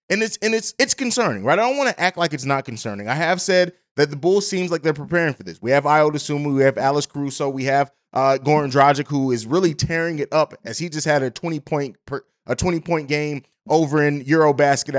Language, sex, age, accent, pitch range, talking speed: English, male, 20-39, American, 135-170 Hz, 230 wpm